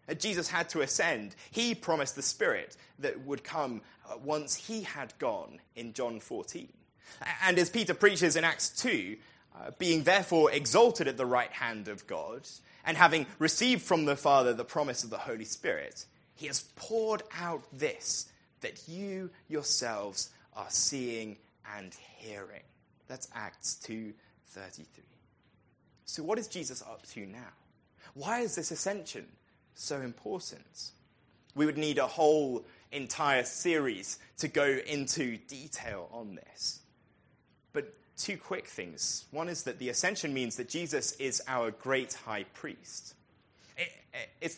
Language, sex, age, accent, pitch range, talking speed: English, male, 20-39, British, 125-185 Hz, 145 wpm